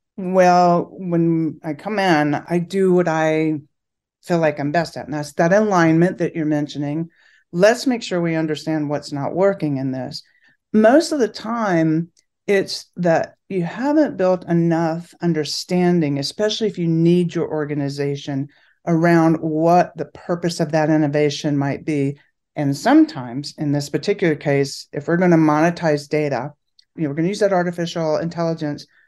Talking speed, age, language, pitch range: 155 wpm, 40-59, English, 145-175 Hz